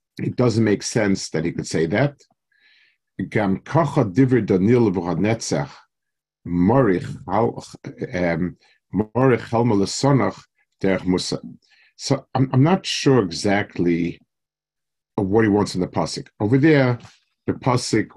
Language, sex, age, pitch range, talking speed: English, male, 50-69, 95-125 Hz, 85 wpm